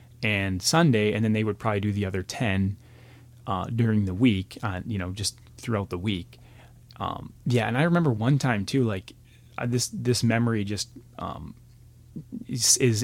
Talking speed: 175 wpm